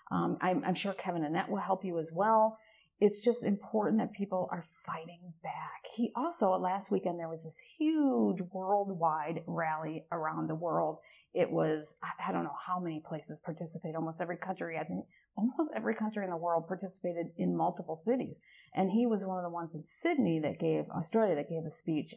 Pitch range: 170-210 Hz